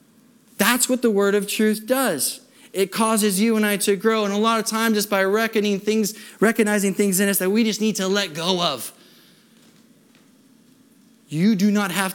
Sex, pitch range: male, 185-255 Hz